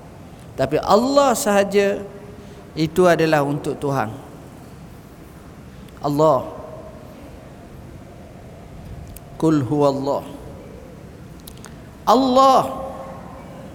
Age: 50-69